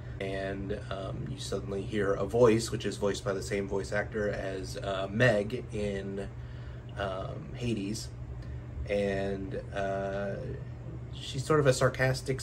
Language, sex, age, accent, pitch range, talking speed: English, male, 30-49, American, 100-120 Hz, 135 wpm